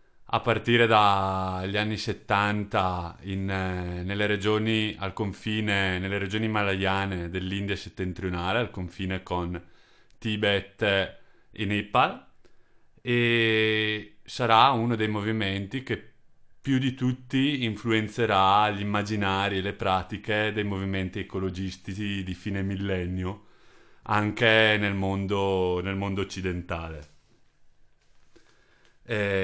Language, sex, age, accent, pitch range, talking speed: Italian, male, 30-49, native, 95-110 Hz, 95 wpm